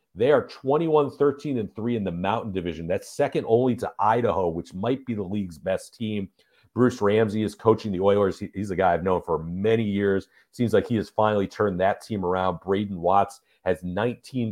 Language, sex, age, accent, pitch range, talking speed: English, male, 40-59, American, 100-130 Hz, 200 wpm